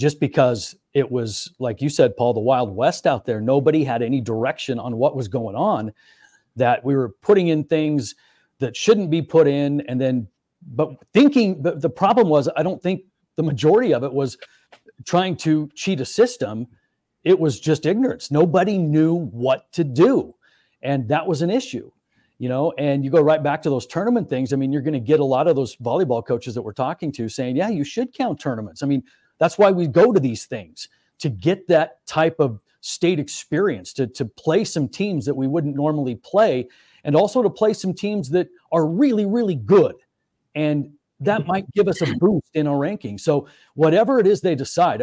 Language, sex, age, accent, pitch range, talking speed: English, male, 40-59, American, 130-175 Hz, 205 wpm